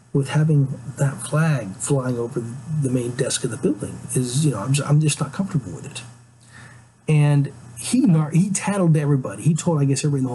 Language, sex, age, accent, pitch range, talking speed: English, male, 40-59, American, 120-150 Hz, 205 wpm